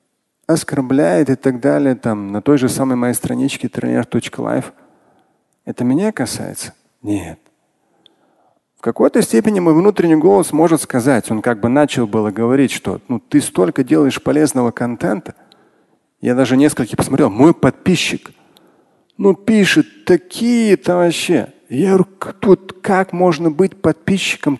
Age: 40-59